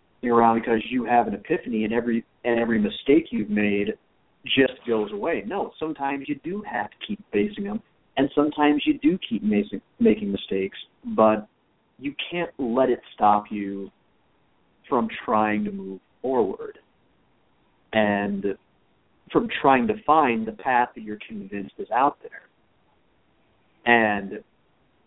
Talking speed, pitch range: 135 wpm, 110-160 Hz